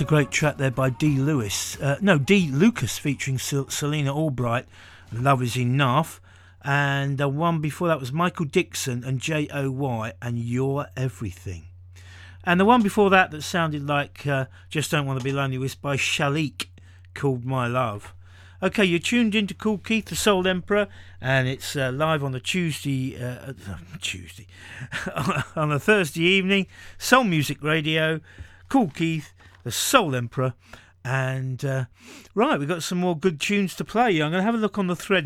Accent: British